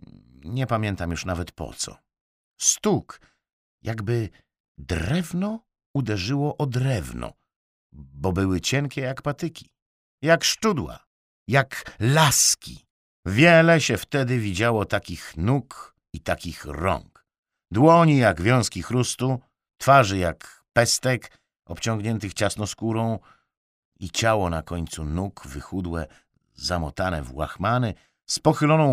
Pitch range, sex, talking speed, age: 90-135 Hz, male, 105 wpm, 50-69